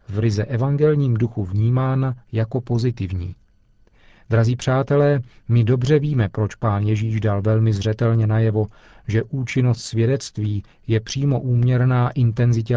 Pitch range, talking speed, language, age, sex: 110-130 Hz, 120 wpm, Czech, 40-59, male